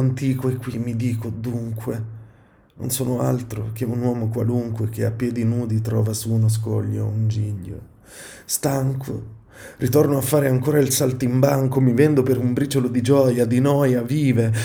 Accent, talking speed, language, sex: native, 165 wpm, Italian, male